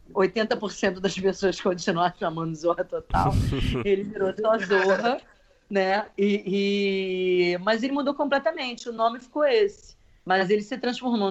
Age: 40-59